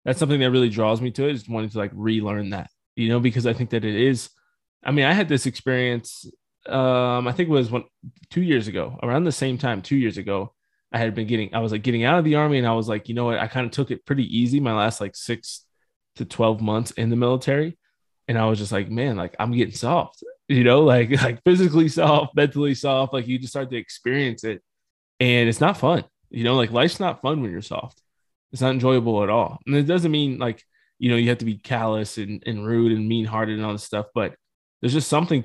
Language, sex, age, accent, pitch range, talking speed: English, male, 20-39, American, 115-135 Hz, 250 wpm